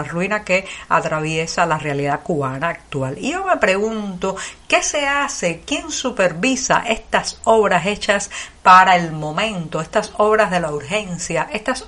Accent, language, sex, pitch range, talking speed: American, Spanish, female, 170-220 Hz, 145 wpm